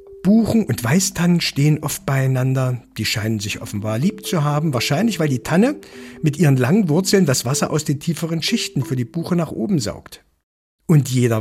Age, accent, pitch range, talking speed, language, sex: 60-79, German, 115-170 Hz, 185 wpm, German, male